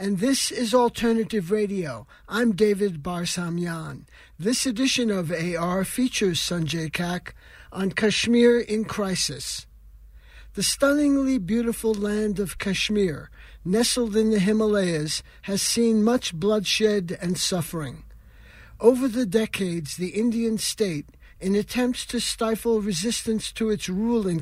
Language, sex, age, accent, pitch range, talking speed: English, male, 60-79, American, 180-225 Hz, 125 wpm